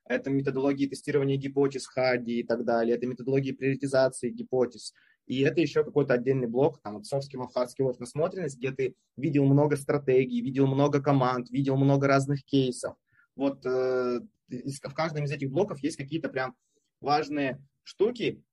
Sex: male